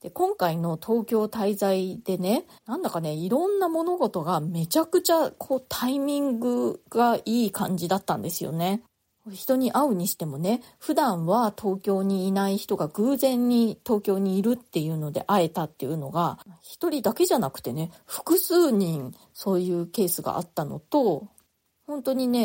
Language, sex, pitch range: Japanese, female, 180-245 Hz